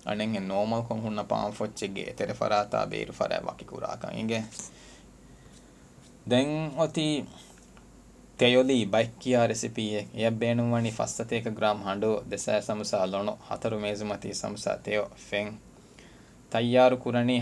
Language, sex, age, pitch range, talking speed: Urdu, male, 20-39, 105-120 Hz, 45 wpm